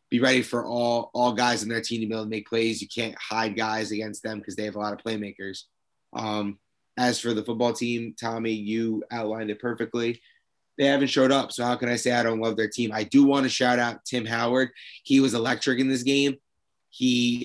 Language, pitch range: English, 115-130 Hz